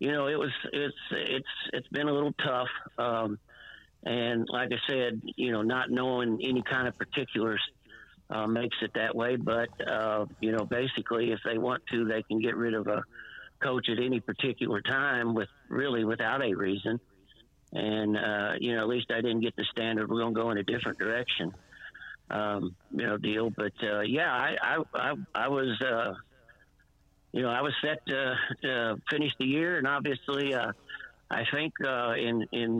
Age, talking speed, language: 60-79, 190 wpm, English